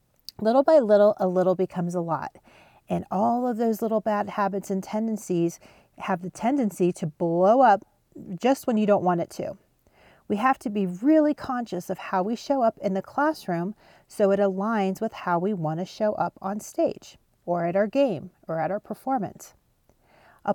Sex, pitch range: female, 180-230 Hz